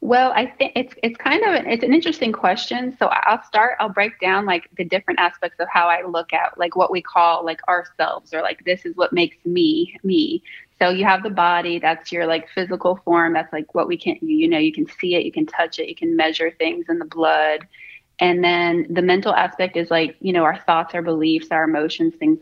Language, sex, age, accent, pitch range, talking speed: English, female, 20-39, American, 170-205 Hz, 240 wpm